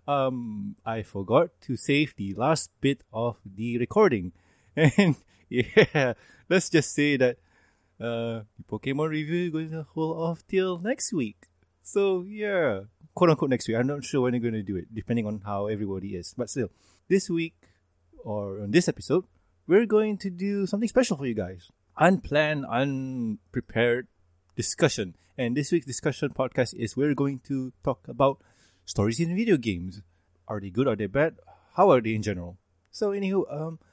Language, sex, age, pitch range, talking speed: English, male, 20-39, 100-155 Hz, 170 wpm